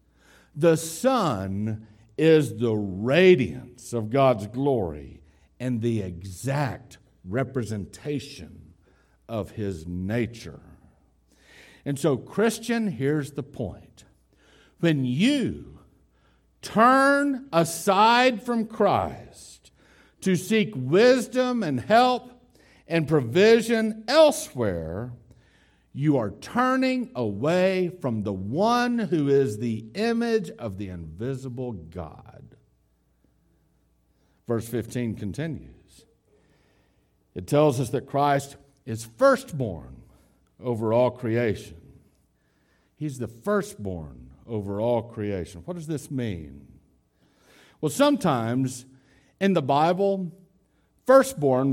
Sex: male